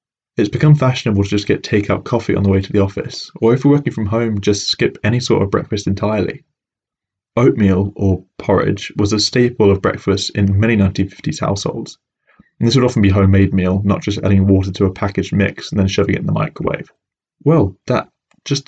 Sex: male